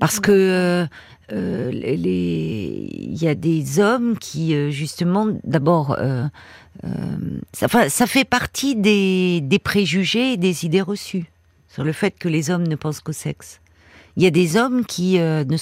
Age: 50-69